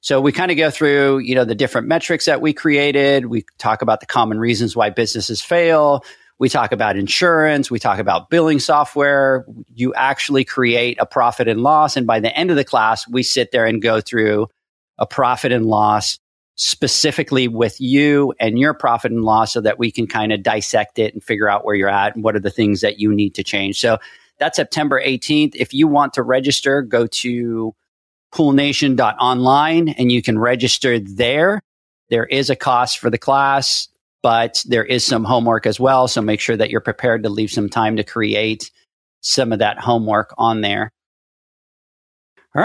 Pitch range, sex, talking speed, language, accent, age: 110-140 Hz, male, 195 wpm, English, American, 40-59